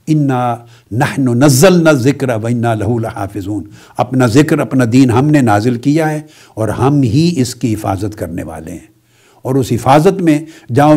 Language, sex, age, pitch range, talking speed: Urdu, male, 60-79, 120-155 Hz, 165 wpm